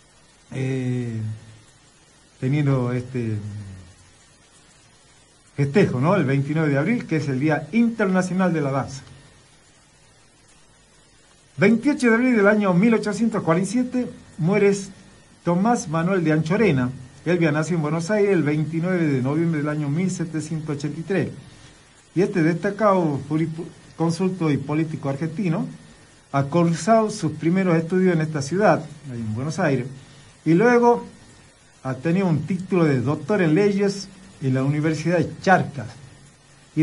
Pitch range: 140-190 Hz